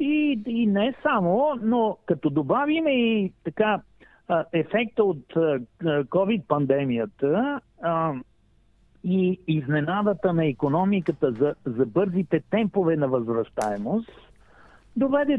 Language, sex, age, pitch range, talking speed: English, male, 50-69, 165-240 Hz, 90 wpm